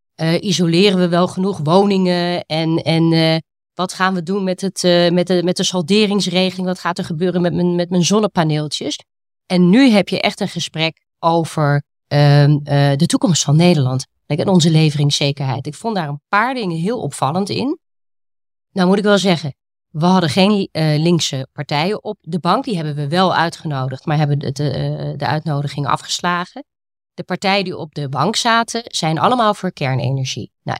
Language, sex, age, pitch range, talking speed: Dutch, female, 30-49, 145-185 Hz, 175 wpm